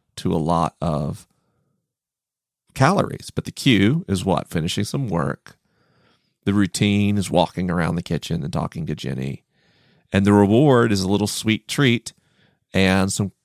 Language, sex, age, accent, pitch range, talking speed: English, male, 40-59, American, 105-145 Hz, 150 wpm